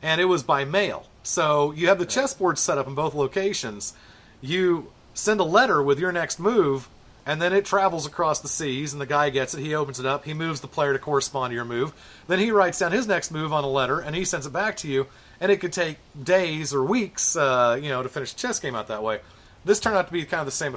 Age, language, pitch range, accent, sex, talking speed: 40-59, English, 135-185 Hz, American, male, 265 wpm